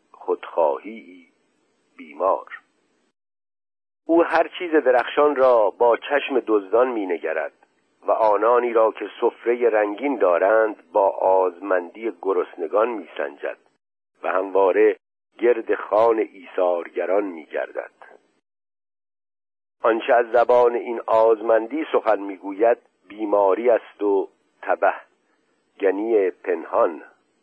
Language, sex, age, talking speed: Persian, male, 50-69, 90 wpm